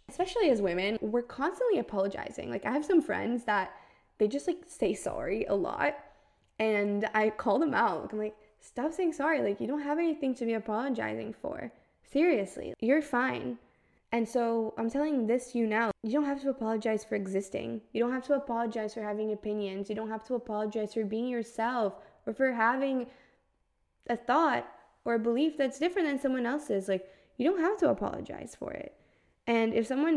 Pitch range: 200-255 Hz